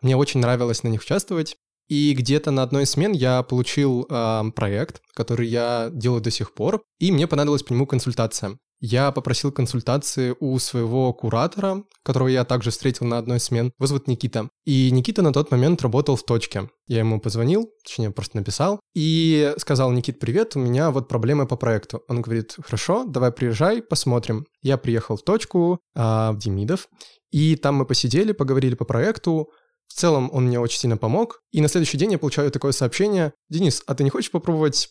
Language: Russian